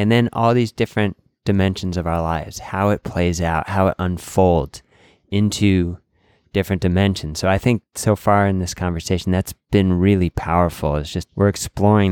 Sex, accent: male, American